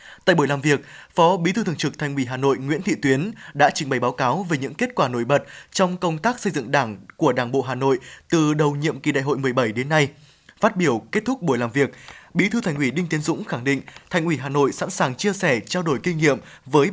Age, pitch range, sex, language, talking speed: 20-39, 140-180 Hz, male, Vietnamese, 270 wpm